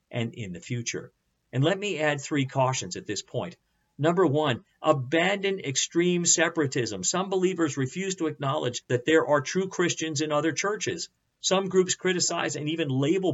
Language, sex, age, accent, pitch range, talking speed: English, male, 50-69, American, 130-165 Hz, 165 wpm